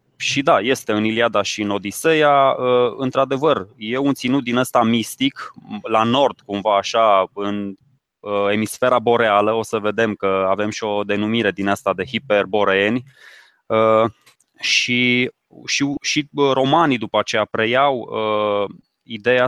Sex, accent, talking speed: male, native, 125 wpm